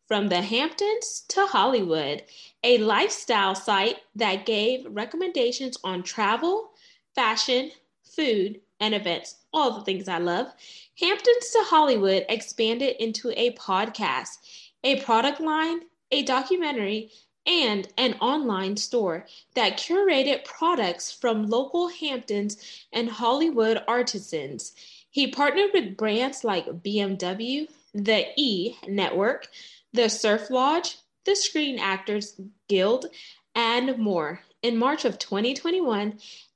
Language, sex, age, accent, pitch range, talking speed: English, female, 20-39, American, 205-285 Hz, 115 wpm